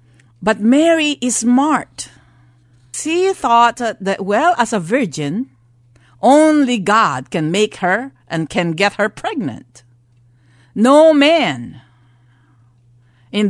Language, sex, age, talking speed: English, female, 50-69, 105 wpm